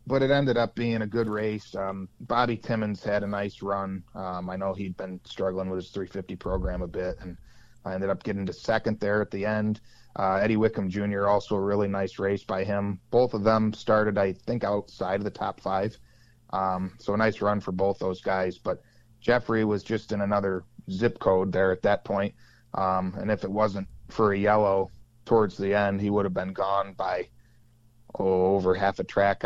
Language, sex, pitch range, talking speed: English, male, 95-110 Hz, 210 wpm